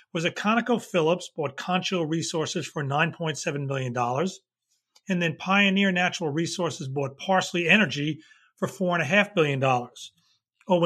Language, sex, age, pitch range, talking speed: English, male, 40-59, 155-195 Hz, 115 wpm